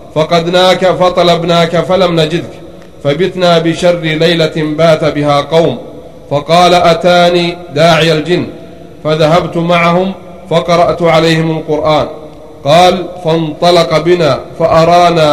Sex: male